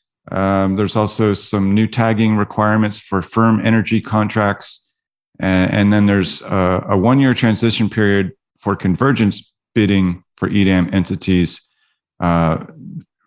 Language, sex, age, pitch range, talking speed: English, male, 40-59, 95-115 Hz, 120 wpm